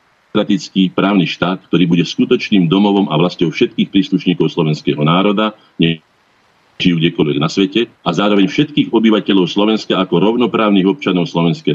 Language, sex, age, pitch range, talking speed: Slovak, male, 50-69, 90-110 Hz, 135 wpm